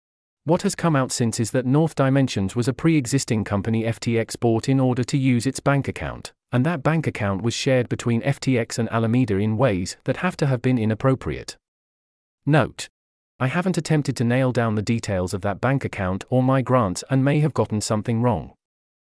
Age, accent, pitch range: 40-59, British, 110-140 Hz